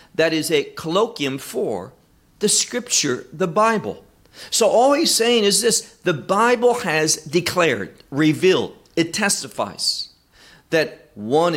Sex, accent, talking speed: male, American, 125 wpm